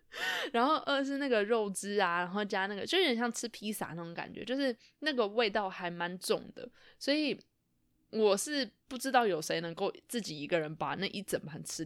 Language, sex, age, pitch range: Chinese, female, 20-39, 190-255 Hz